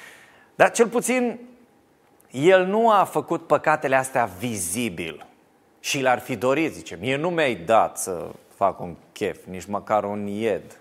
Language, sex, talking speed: Romanian, male, 150 wpm